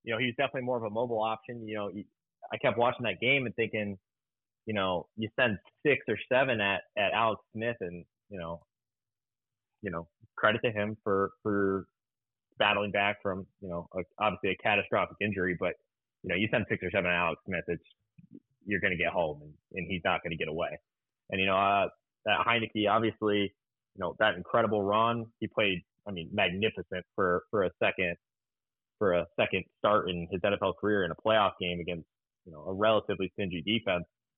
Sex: male